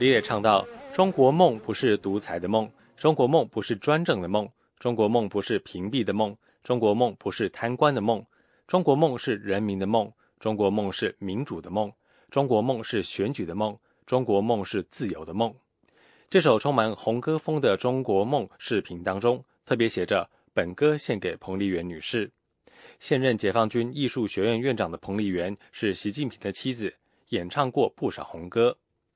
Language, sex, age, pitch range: English, male, 20-39, 100-130 Hz